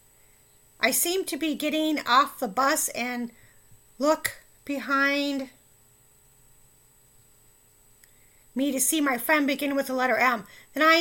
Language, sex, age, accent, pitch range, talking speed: English, female, 50-69, American, 230-300 Hz, 125 wpm